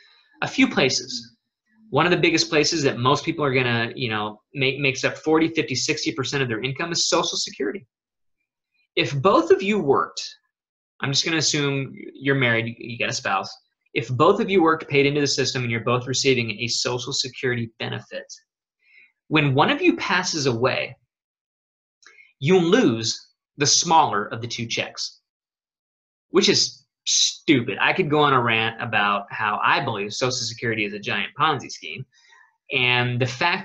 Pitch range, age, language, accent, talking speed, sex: 120-170 Hz, 20-39, English, American, 170 wpm, male